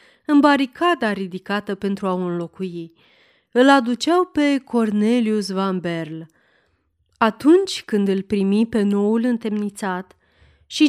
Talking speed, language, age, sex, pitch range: 115 wpm, Romanian, 30-49, female, 195-265 Hz